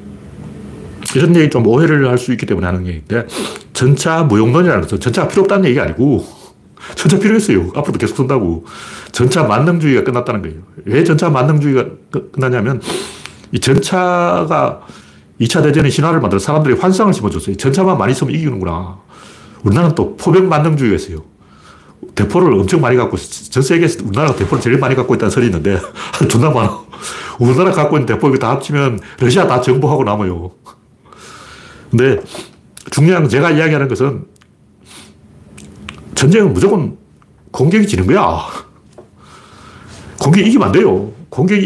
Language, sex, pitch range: Korean, male, 115-170 Hz